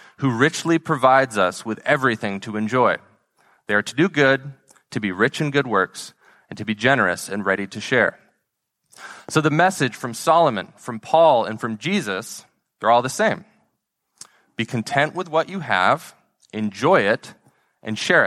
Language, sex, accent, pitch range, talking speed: English, male, American, 115-155 Hz, 170 wpm